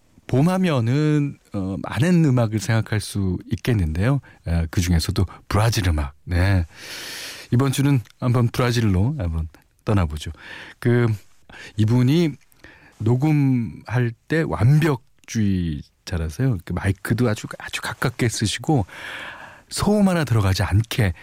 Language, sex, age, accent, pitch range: Korean, male, 40-59, native, 90-135 Hz